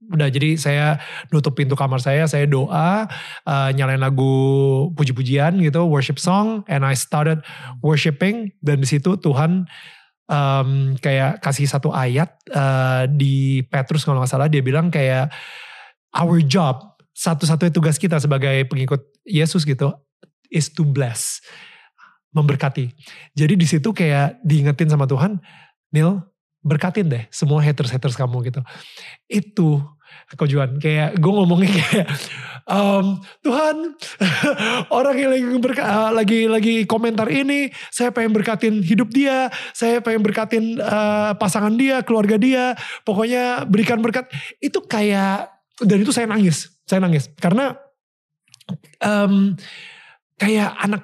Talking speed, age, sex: 125 wpm, 30-49, male